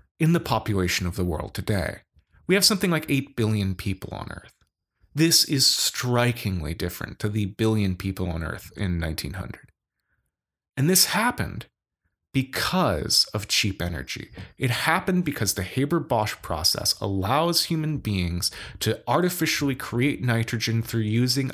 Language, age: English, 30-49